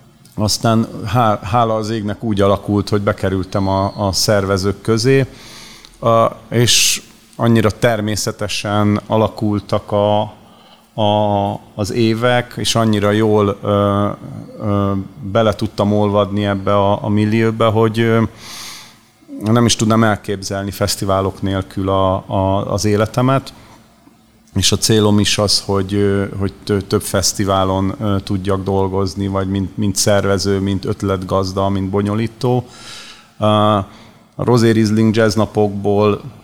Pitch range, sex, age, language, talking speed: 100-115 Hz, male, 40-59, Hungarian, 100 wpm